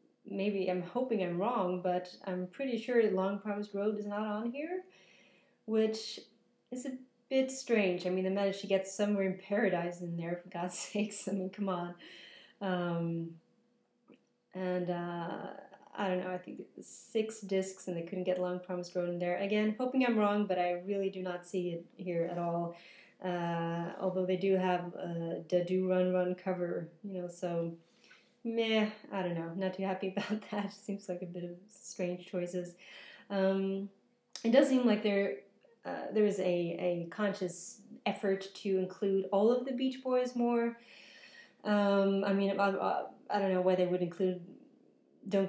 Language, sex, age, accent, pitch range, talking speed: English, female, 30-49, American, 180-210 Hz, 180 wpm